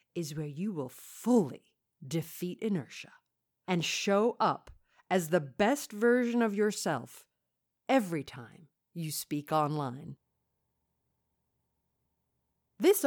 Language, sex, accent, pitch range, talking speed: English, female, American, 155-220 Hz, 100 wpm